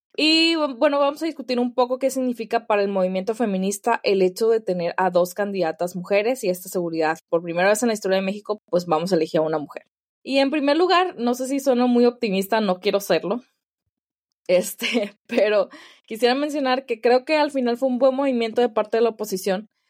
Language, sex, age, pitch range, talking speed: Spanish, female, 20-39, 180-240 Hz, 210 wpm